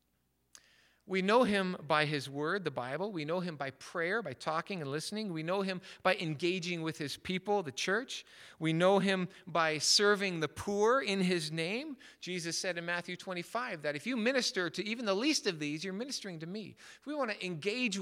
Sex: male